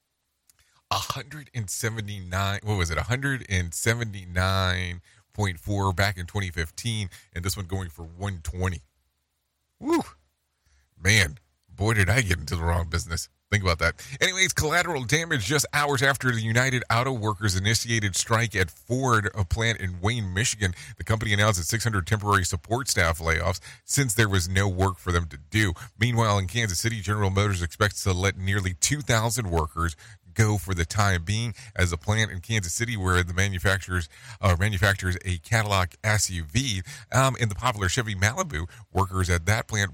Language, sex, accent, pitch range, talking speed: English, male, American, 90-110 Hz, 175 wpm